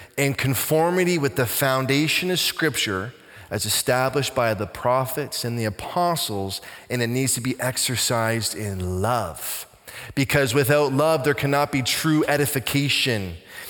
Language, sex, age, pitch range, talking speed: English, male, 20-39, 130-185 Hz, 135 wpm